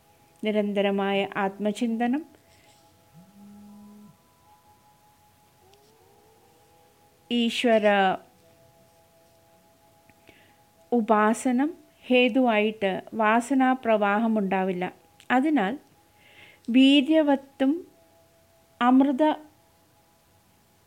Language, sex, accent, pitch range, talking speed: English, female, Indian, 200-265 Hz, 35 wpm